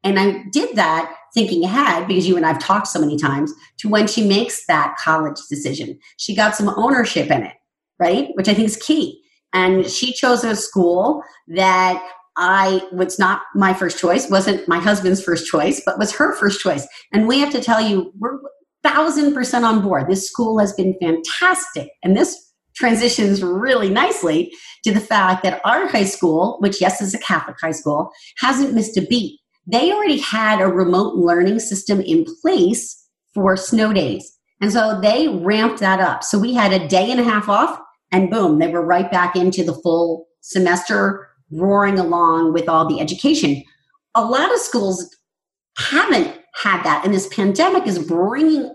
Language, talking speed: English, 185 wpm